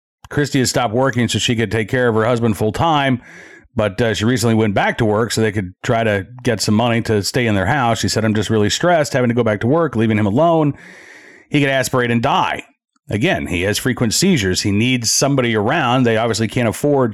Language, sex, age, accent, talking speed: English, male, 40-59, American, 240 wpm